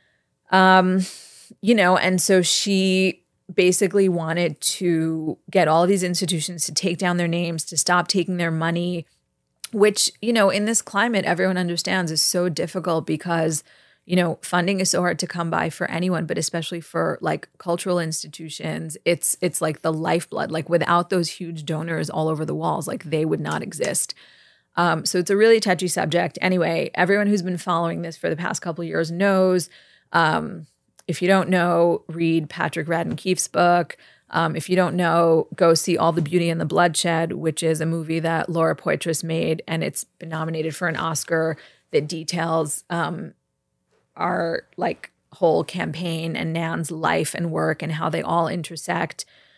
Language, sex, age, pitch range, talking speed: English, female, 30-49, 165-185 Hz, 180 wpm